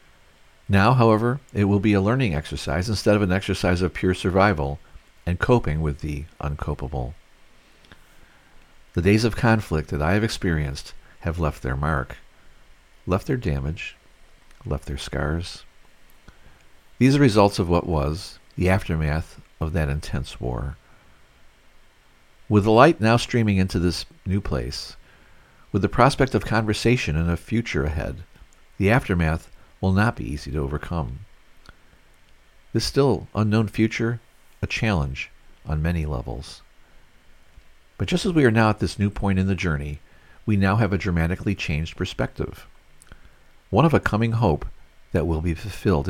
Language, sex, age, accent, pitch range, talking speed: English, male, 50-69, American, 75-105 Hz, 150 wpm